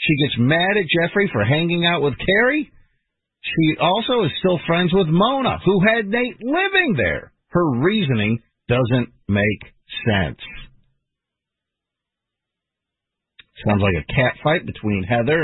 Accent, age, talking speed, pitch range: American, 50-69, 130 wpm, 110-175 Hz